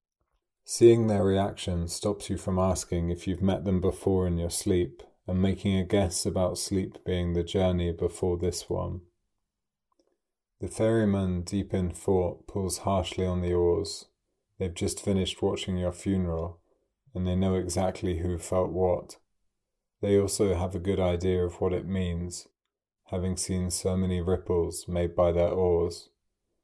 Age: 30-49